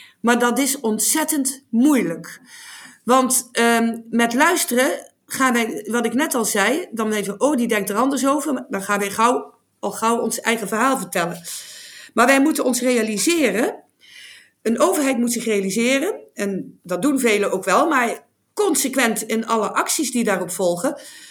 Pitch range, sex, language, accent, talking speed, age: 220-275 Hz, female, Dutch, Dutch, 160 wpm, 50-69